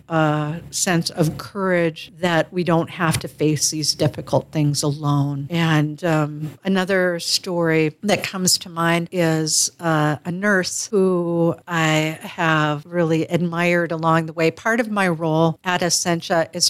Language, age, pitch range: English, 50-69, 155-180 Hz